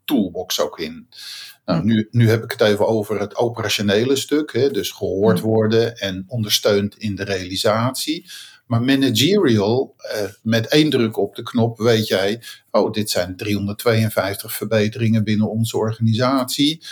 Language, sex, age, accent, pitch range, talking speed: Dutch, male, 50-69, Dutch, 110-135 Hz, 150 wpm